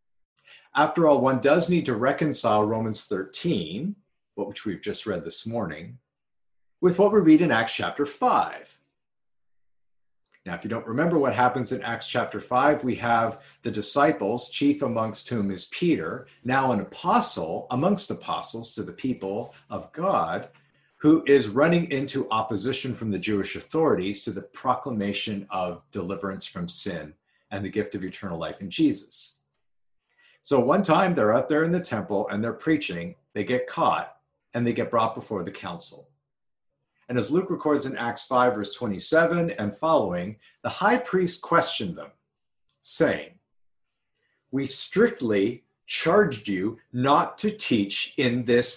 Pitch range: 110-165 Hz